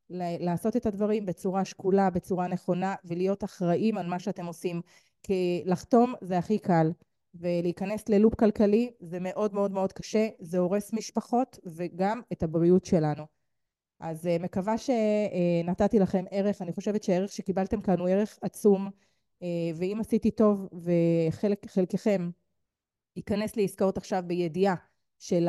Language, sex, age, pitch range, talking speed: Hebrew, female, 30-49, 175-210 Hz, 130 wpm